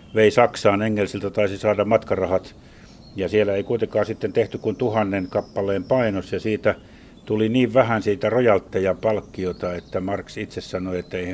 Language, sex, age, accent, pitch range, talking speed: Finnish, male, 50-69, native, 95-115 Hz, 160 wpm